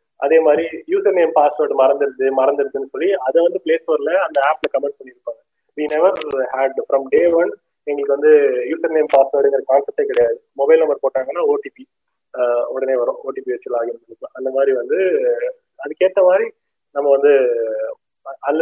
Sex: male